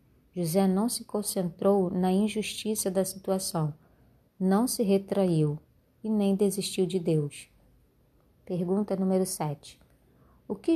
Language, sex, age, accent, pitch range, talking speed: Portuguese, female, 20-39, Brazilian, 160-195 Hz, 115 wpm